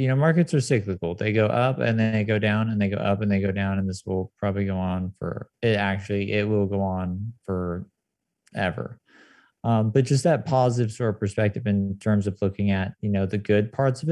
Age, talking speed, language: 20-39, 230 wpm, English